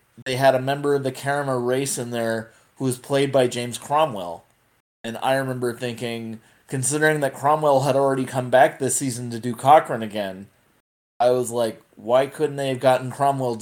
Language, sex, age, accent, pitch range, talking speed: English, male, 20-39, American, 115-135 Hz, 190 wpm